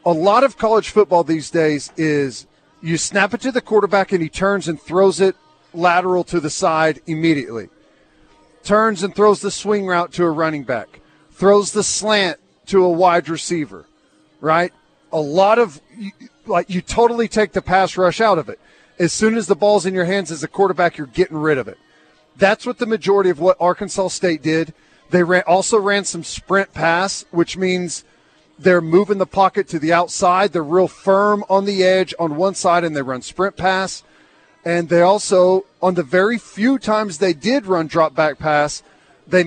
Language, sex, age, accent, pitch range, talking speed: English, male, 40-59, American, 165-200 Hz, 190 wpm